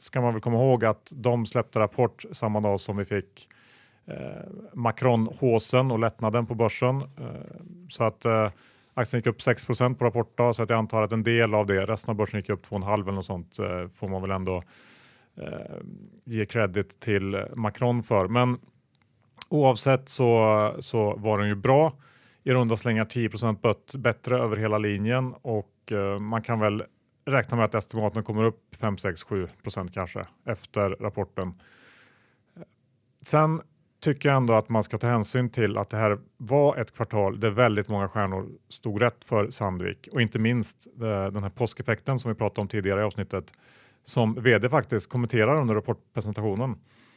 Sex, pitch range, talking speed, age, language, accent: male, 105-125 Hz, 170 wpm, 30-49, Swedish, Norwegian